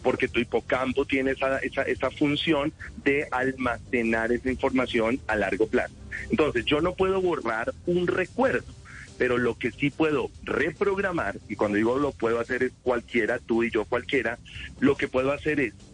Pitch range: 125-165 Hz